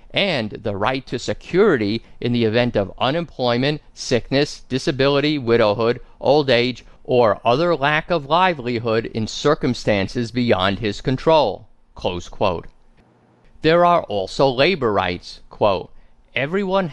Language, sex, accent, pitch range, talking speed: English, male, American, 115-150 Hz, 115 wpm